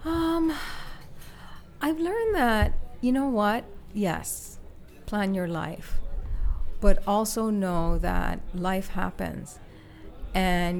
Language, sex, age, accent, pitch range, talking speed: English, female, 40-59, American, 155-190 Hz, 100 wpm